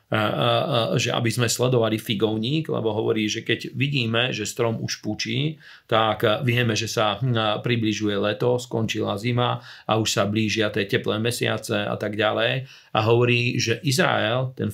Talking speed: 150 wpm